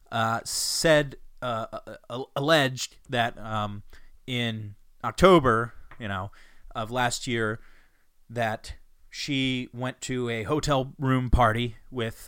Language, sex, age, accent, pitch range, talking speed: English, male, 30-49, American, 105-125 Hz, 110 wpm